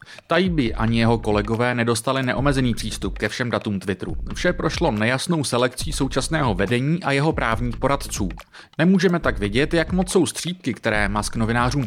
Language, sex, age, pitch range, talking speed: Czech, male, 30-49, 110-160 Hz, 155 wpm